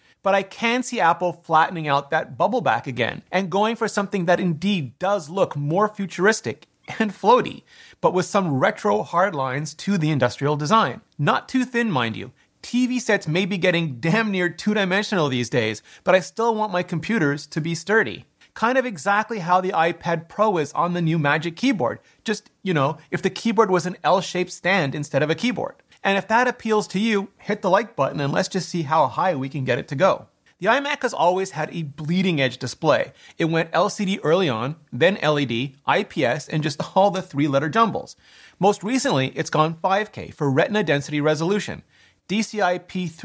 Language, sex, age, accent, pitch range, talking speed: English, male, 30-49, American, 155-205 Hz, 195 wpm